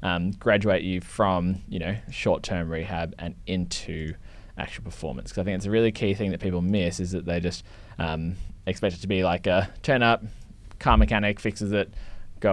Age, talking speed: 20-39, 195 wpm